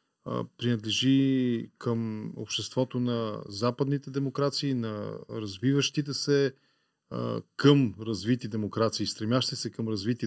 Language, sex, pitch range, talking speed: Bulgarian, male, 120-150 Hz, 95 wpm